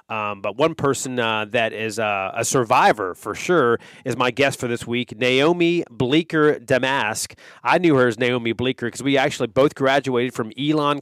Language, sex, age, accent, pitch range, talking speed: English, male, 30-49, American, 115-140 Hz, 185 wpm